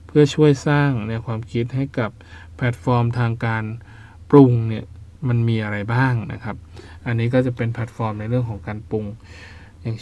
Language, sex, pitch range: Thai, male, 110-125 Hz